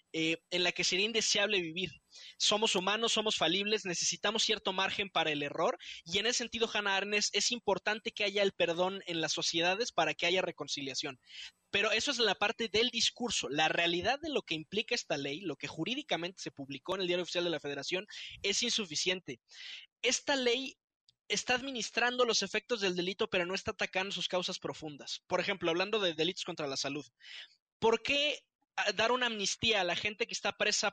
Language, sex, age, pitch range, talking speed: Spanish, male, 20-39, 175-220 Hz, 190 wpm